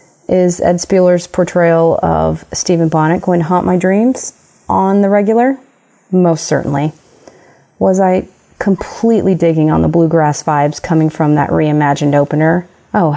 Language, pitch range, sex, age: English, 160-215 Hz, female, 30-49